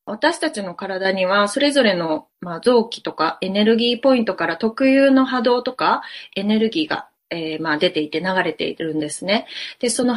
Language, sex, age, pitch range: Japanese, female, 20-39, 180-245 Hz